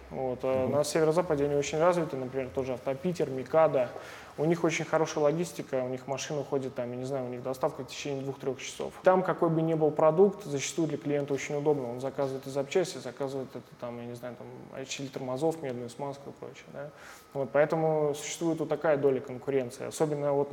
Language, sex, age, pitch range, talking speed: Russian, male, 20-39, 130-160 Hz, 200 wpm